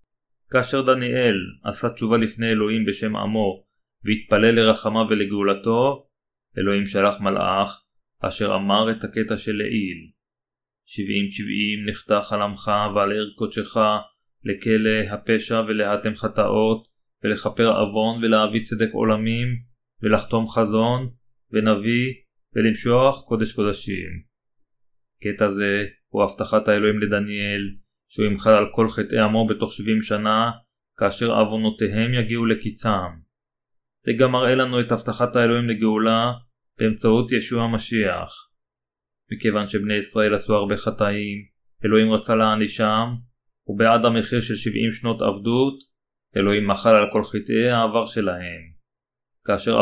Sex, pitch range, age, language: male, 105-115 Hz, 20-39, Hebrew